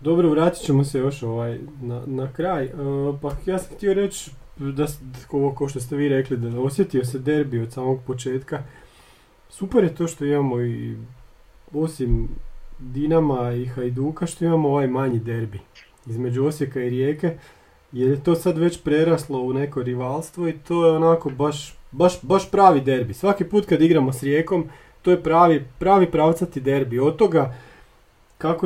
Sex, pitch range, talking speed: male, 130-160 Hz, 170 wpm